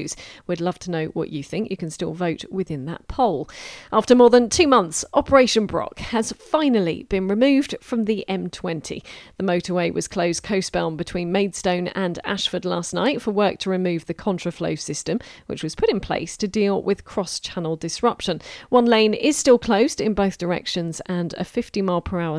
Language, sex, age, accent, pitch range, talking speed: English, female, 40-59, British, 175-225 Hz, 180 wpm